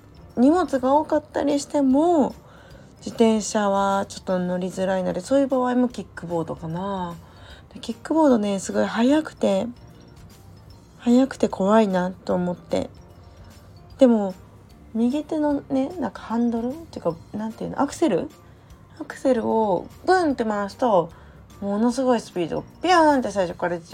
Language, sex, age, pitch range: Japanese, female, 20-39, 180-270 Hz